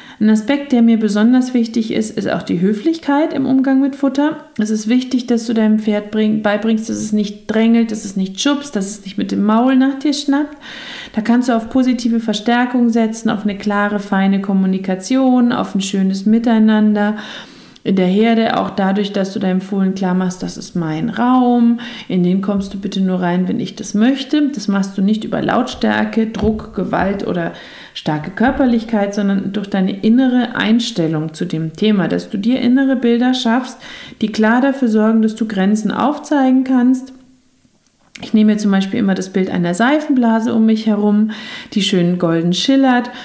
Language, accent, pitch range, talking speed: German, German, 200-245 Hz, 185 wpm